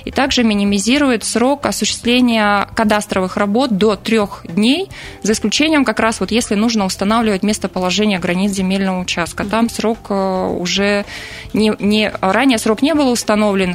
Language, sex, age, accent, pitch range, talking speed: Russian, female, 20-39, native, 195-225 Hz, 130 wpm